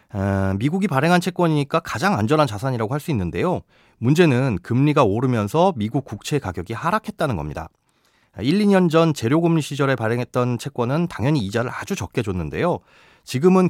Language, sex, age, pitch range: Korean, male, 30-49, 115-165 Hz